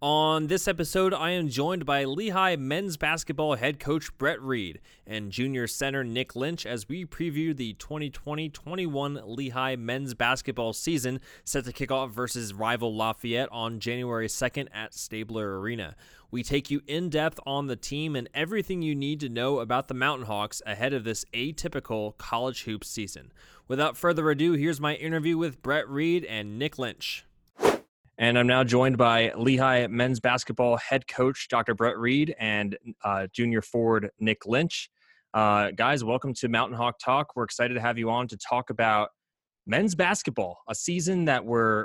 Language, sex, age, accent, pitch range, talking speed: English, male, 20-39, American, 115-150 Hz, 170 wpm